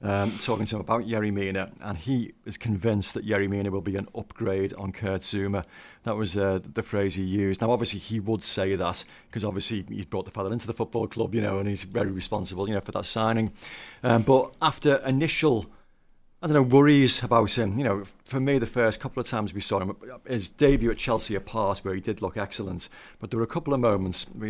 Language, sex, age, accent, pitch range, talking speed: English, male, 40-59, British, 100-125 Hz, 230 wpm